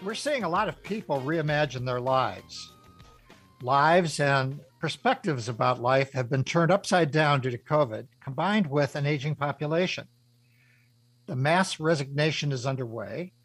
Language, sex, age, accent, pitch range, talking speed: English, male, 60-79, American, 125-165 Hz, 145 wpm